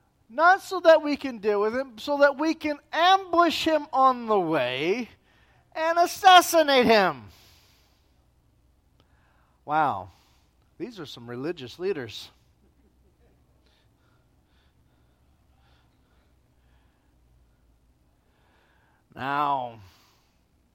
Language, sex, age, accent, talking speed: English, male, 40-59, American, 80 wpm